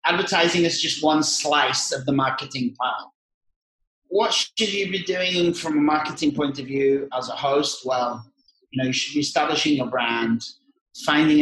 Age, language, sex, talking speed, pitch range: 30-49, English, male, 175 wpm, 140-190 Hz